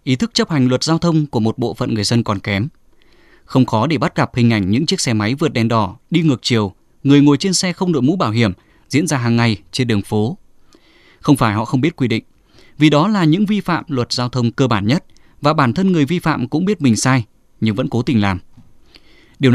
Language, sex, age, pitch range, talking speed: Vietnamese, male, 20-39, 115-155 Hz, 255 wpm